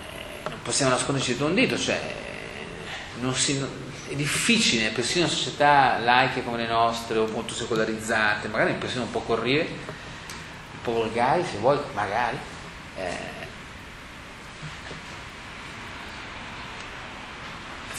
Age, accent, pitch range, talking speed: 40-59, native, 110-135 Hz, 100 wpm